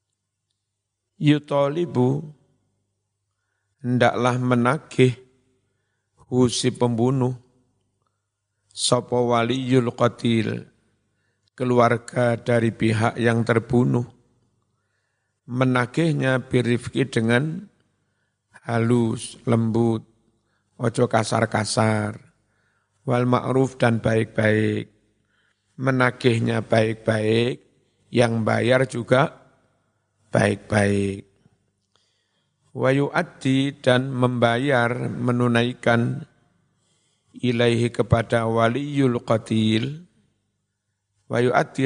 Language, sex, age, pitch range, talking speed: Indonesian, male, 50-69, 110-125 Hz, 60 wpm